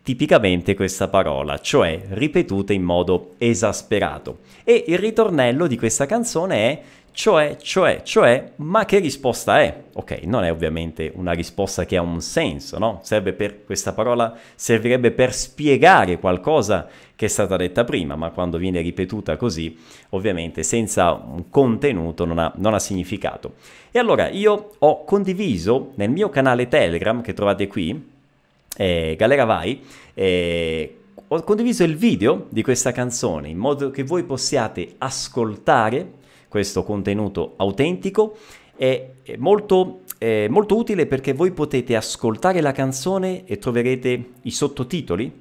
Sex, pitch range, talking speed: male, 95-140 Hz, 140 wpm